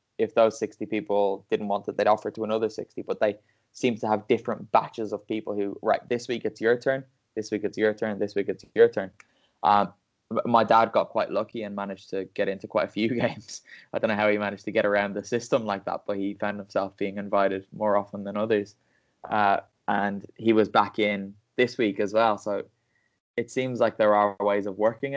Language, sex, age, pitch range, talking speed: English, male, 10-29, 100-110 Hz, 225 wpm